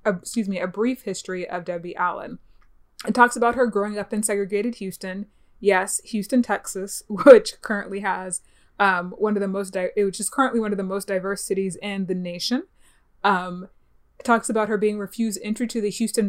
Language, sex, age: English, female, 20-39